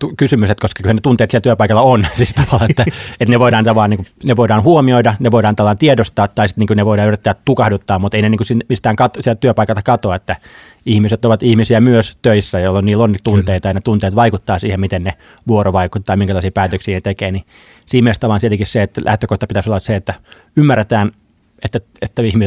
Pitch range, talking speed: 100-115 Hz, 210 wpm